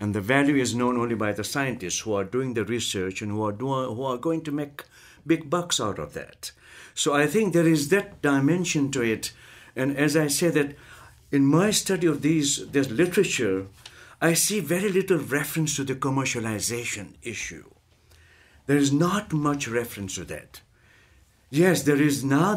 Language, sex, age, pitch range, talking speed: English, male, 60-79, 115-150 Hz, 185 wpm